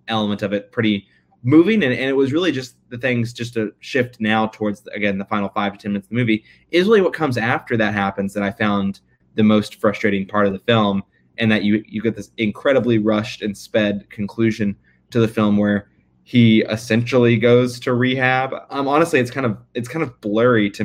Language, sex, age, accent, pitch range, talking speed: English, male, 20-39, American, 100-115 Hz, 215 wpm